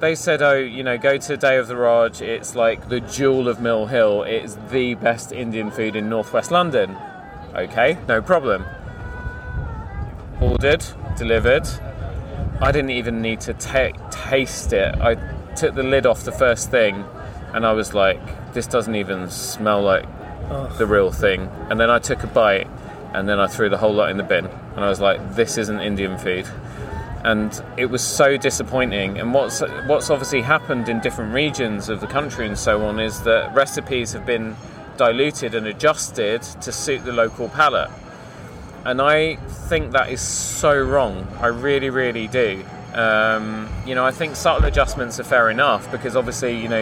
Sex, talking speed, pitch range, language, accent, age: male, 180 wpm, 105-130 Hz, English, British, 20-39